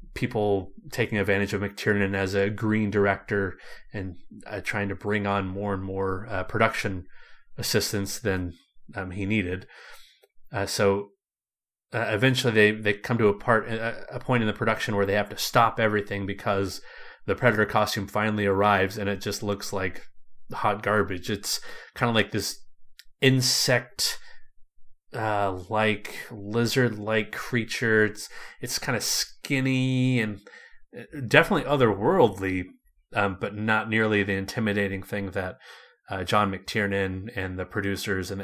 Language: English